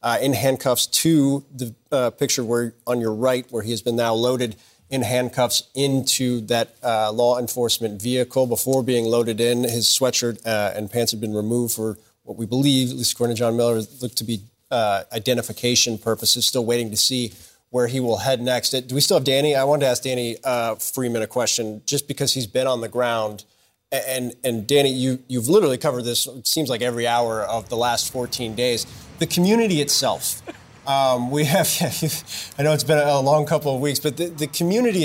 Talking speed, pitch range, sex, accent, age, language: 205 wpm, 115-140 Hz, male, American, 30-49, English